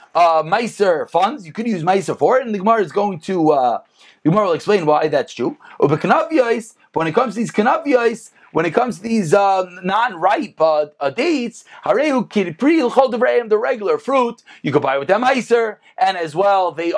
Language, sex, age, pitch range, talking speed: English, male, 40-59, 190-255 Hz, 190 wpm